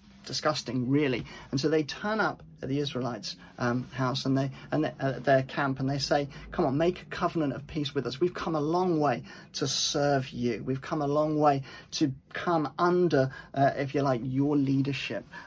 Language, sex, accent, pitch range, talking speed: English, male, British, 130-160 Hz, 205 wpm